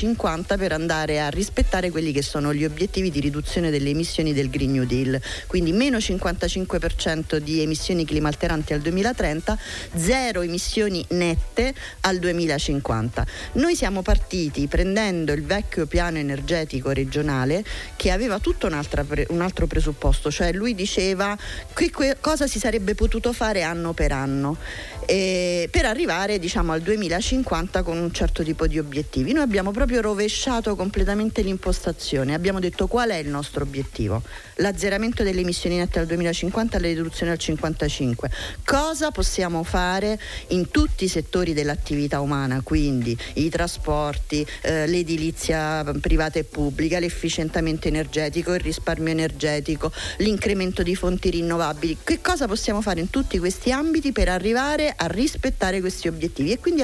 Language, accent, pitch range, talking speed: Italian, native, 155-205 Hz, 140 wpm